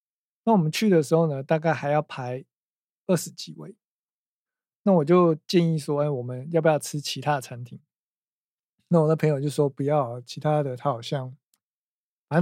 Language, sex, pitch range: Chinese, male, 140-175 Hz